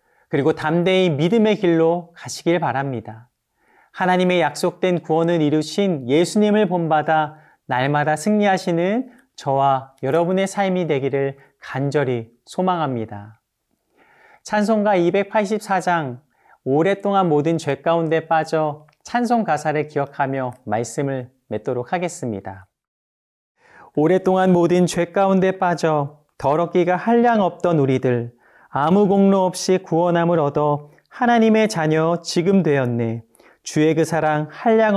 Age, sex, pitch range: 40-59, male, 145-190 Hz